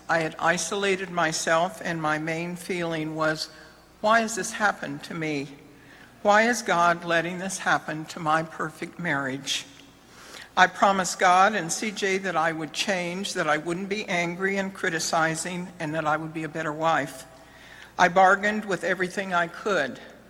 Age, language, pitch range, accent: 60-79, English, 160-195 Hz, American